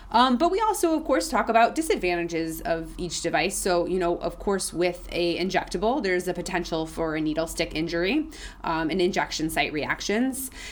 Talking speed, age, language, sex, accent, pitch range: 185 wpm, 20-39, English, female, American, 170-225 Hz